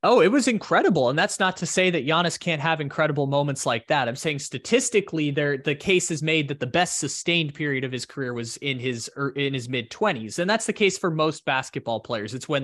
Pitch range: 130-160 Hz